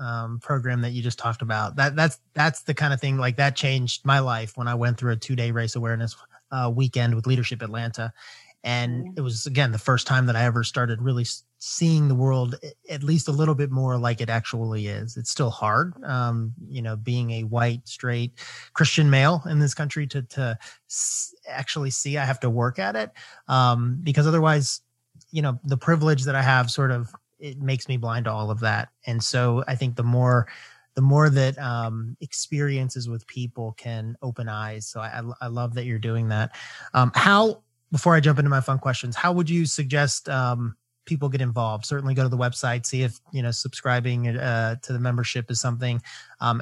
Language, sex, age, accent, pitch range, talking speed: English, male, 30-49, American, 120-140 Hz, 205 wpm